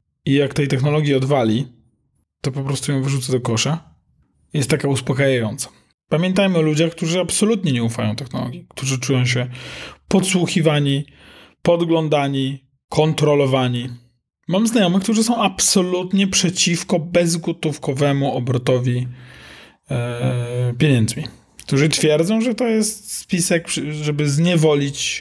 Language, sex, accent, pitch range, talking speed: Polish, male, native, 130-165 Hz, 110 wpm